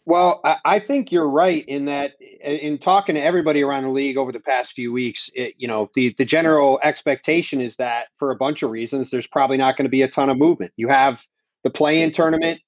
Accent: American